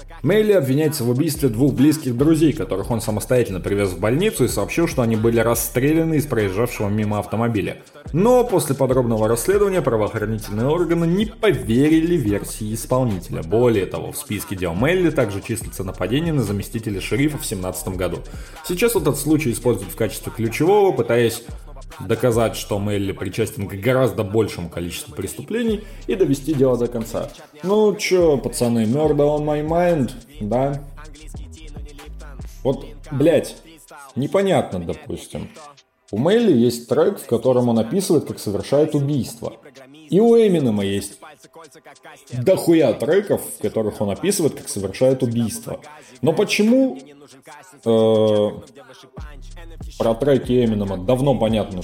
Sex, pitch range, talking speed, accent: male, 110-155 Hz, 130 wpm, native